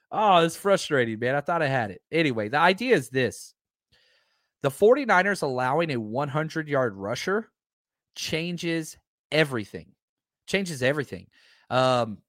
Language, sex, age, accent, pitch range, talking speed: English, male, 30-49, American, 130-190 Hz, 120 wpm